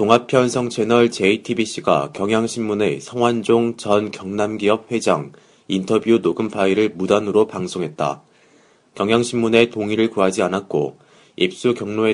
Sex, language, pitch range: male, Korean, 100-115 Hz